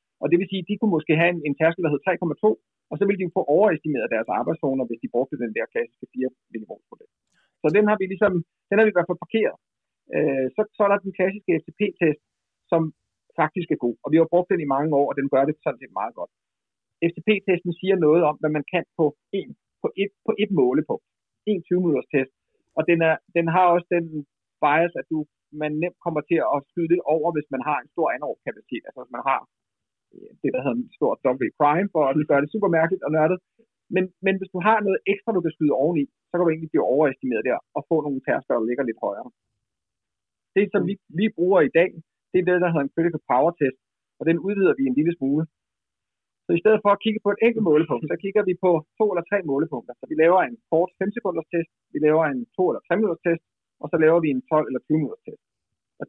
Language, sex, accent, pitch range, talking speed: Danish, male, native, 150-195 Hz, 240 wpm